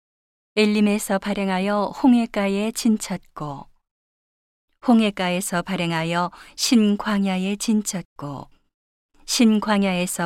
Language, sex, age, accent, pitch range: Korean, female, 40-59, native, 175-210 Hz